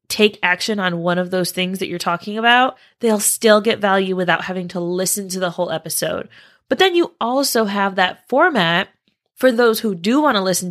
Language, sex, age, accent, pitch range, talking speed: English, female, 20-39, American, 180-230 Hz, 205 wpm